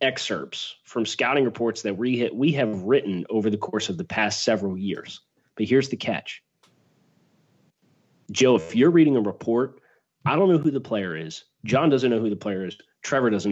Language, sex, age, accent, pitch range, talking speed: English, male, 30-49, American, 100-130 Hz, 195 wpm